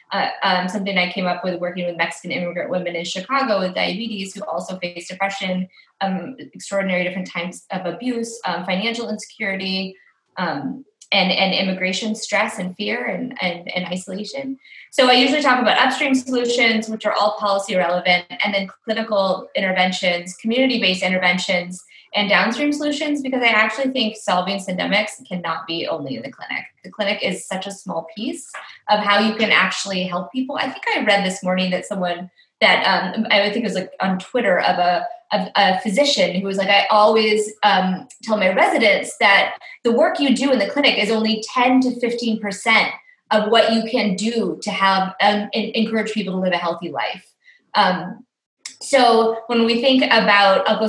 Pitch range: 185-230 Hz